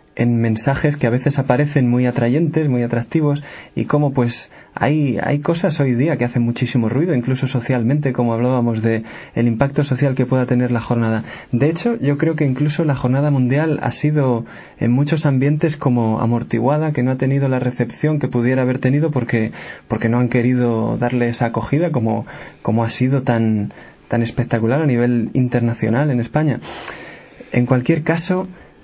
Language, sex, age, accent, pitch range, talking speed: Spanish, male, 20-39, Spanish, 120-145 Hz, 175 wpm